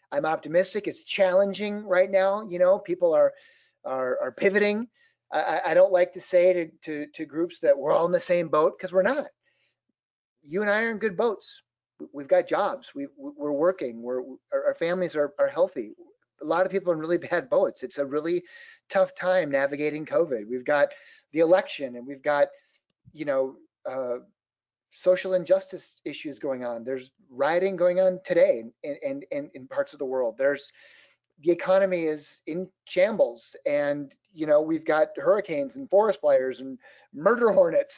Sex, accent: male, American